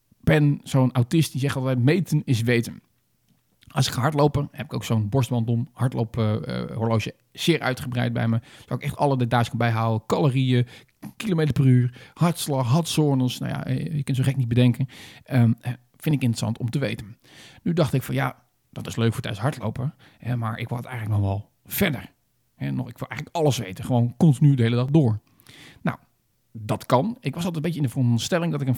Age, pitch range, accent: 40-59, 115-140 Hz, Dutch